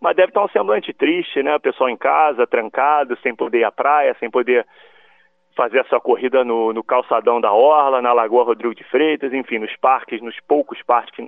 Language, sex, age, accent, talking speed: Portuguese, male, 30-49, Brazilian, 195 wpm